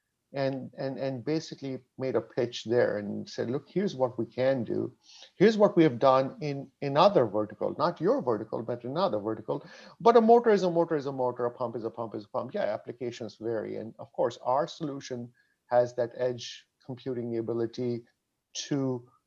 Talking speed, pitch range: 195 wpm, 115-135 Hz